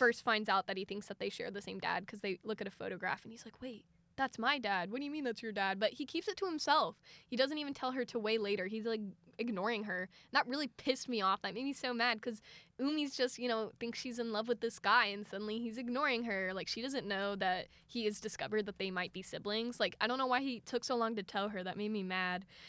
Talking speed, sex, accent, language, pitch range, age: 285 wpm, female, American, English, 200-245 Hz, 10-29